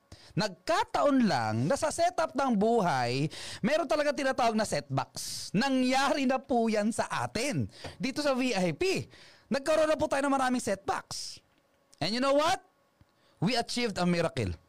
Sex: male